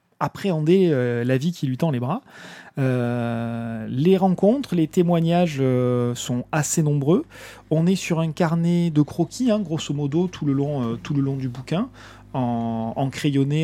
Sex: male